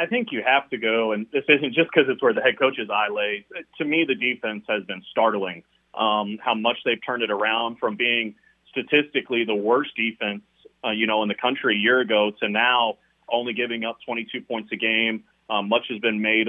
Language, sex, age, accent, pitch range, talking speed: English, male, 30-49, American, 105-125 Hz, 220 wpm